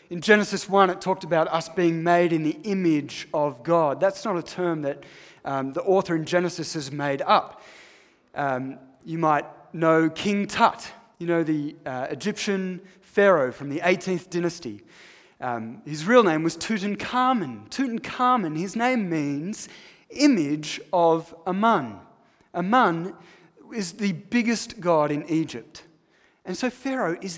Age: 30-49